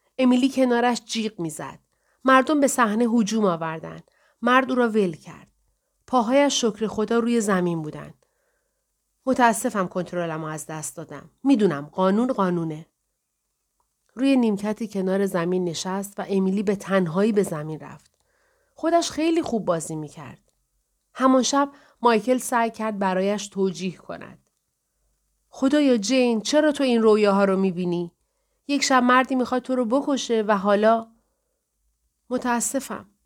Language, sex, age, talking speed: Persian, female, 40-59, 135 wpm